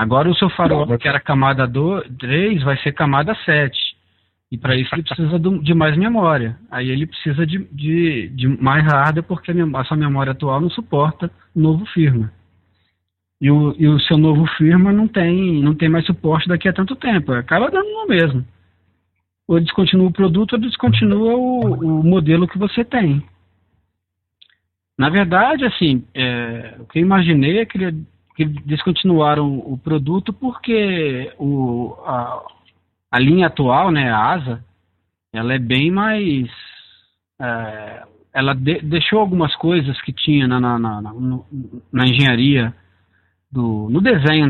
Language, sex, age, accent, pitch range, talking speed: Portuguese, male, 40-59, Brazilian, 120-170 Hz, 150 wpm